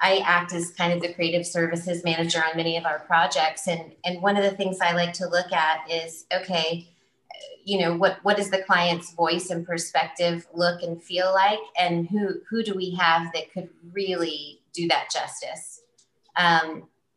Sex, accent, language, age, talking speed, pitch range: female, American, English, 30-49, 190 wpm, 165-190 Hz